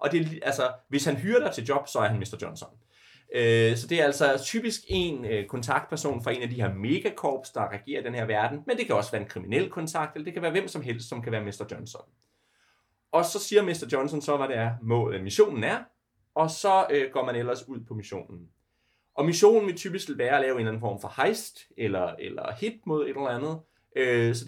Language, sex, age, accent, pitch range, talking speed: Danish, male, 30-49, native, 115-165 Hz, 230 wpm